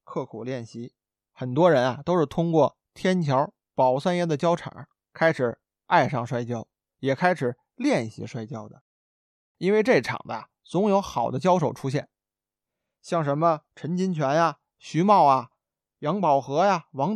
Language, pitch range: Chinese, 135-185 Hz